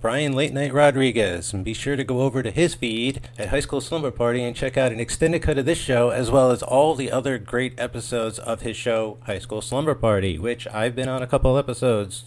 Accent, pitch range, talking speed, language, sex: American, 115-135 Hz, 240 wpm, English, male